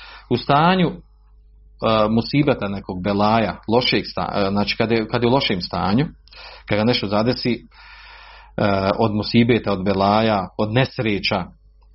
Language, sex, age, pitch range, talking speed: Croatian, male, 40-59, 95-125 Hz, 135 wpm